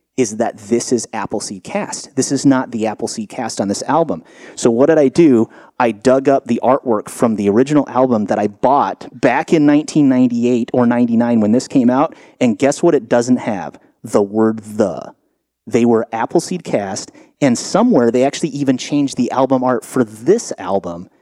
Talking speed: 185 wpm